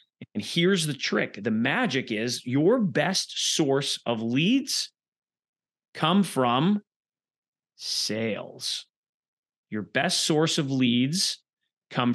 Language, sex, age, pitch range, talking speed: English, male, 40-59, 125-165 Hz, 105 wpm